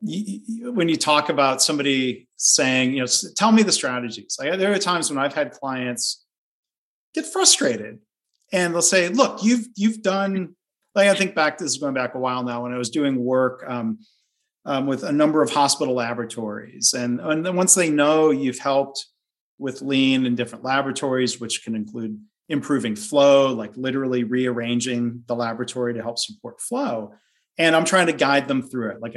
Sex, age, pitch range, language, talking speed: male, 40-59, 125-185 Hz, English, 180 wpm